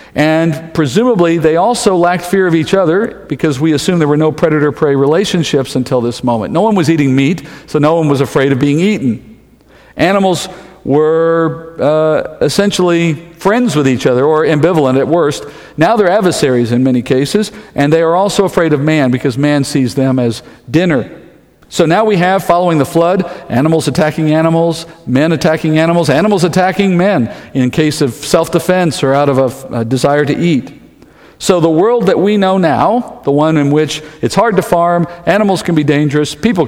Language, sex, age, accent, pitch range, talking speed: English, male, 50-69, American, 140-175 Hz, 185 wpm